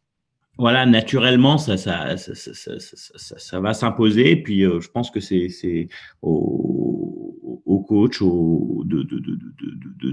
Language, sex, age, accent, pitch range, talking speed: French, male, 30-49, French, 95-115 Hz, 170 wpm